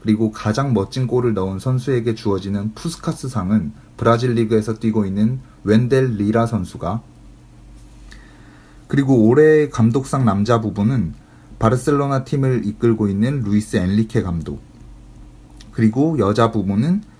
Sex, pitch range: male, 105-130 Hz